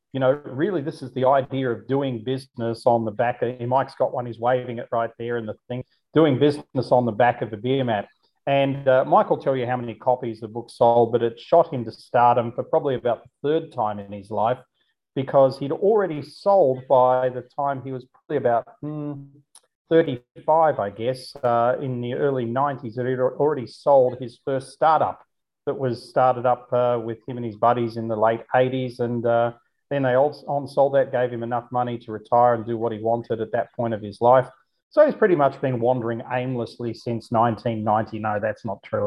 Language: English